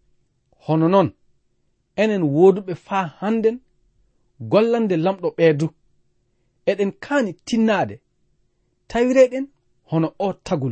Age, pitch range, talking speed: 40-59, 145-220 Hz, 85 wpm